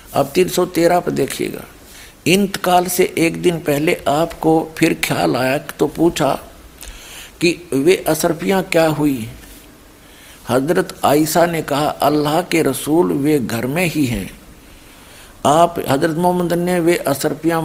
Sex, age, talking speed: male, 60-79, 135 wpm